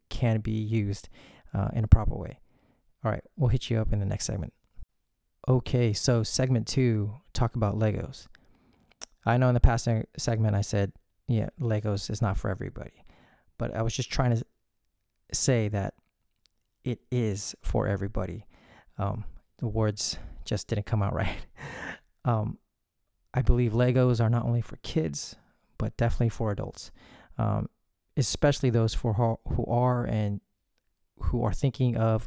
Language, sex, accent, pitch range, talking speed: English, male, American, 105-120 Hz, 155 wpm